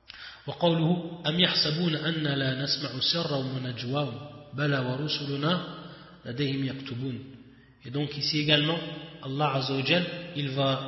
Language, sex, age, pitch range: French, male, 30-49, 130-160 Hz